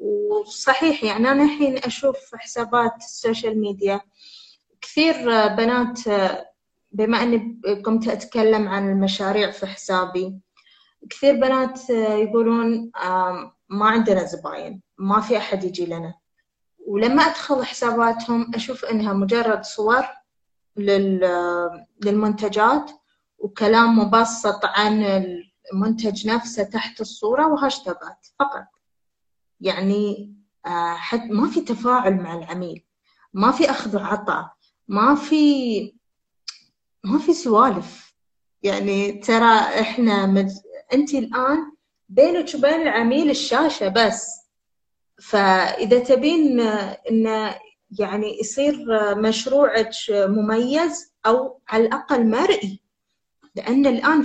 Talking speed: 95 wpm